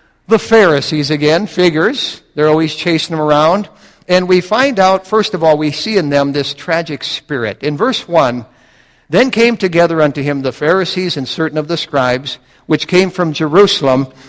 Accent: American